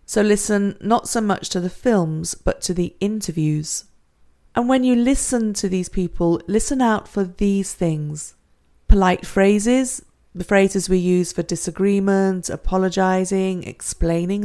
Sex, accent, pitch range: female, British, 180-215 Hz